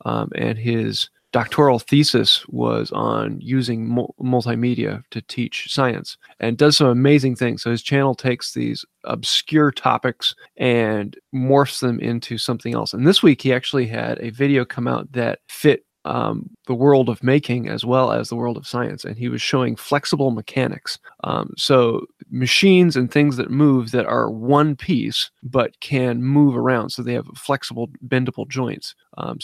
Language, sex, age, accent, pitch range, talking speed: English, male, 20-39, American, 115-135 Hz, 165 wpm